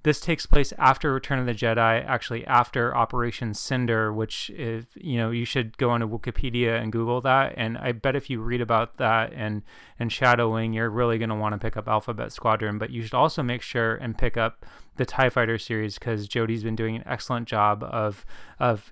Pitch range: 110-125 Hz